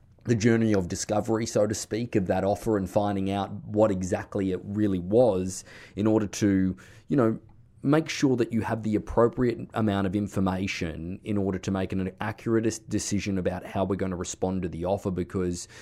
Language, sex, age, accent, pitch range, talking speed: English, male, 20-39, Australian, 95-105 Hz, 190 wpm